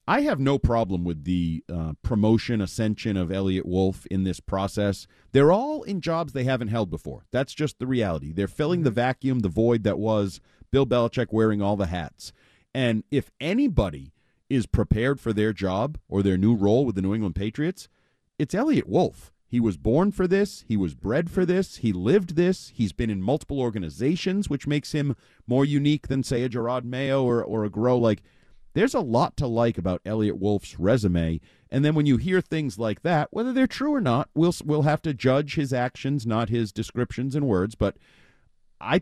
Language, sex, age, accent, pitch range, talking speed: English, male, 40-59, American, 100-135 Hz, 200 wpm